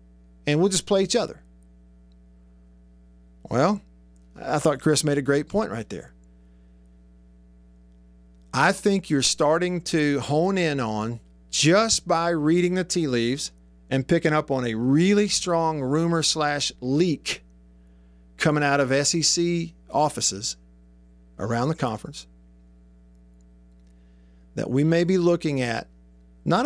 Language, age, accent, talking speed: English, 50-69, American, 125 wpm